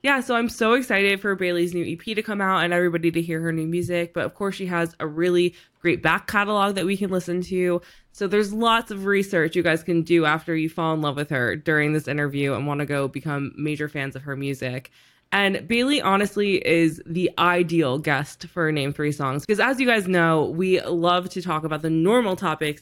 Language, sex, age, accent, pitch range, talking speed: English, female, 20-39, American, 145-175 Hz, 230 wpm